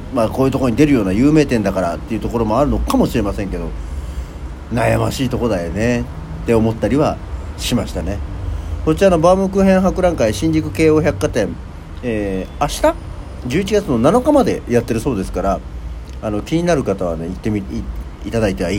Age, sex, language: 40-59, male, Japanese